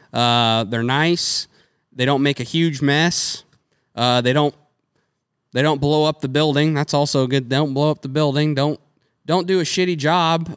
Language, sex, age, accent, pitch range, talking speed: English, male, 20-39, American, 120-150 Hz, 185 wpm